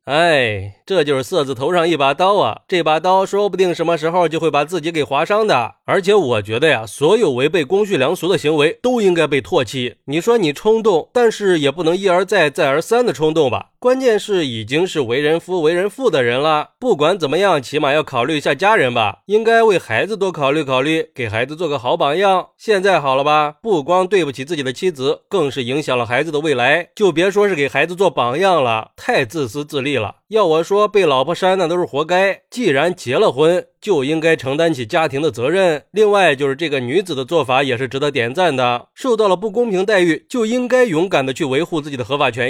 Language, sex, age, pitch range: Chinese, male, 20-39, 140-205 Hz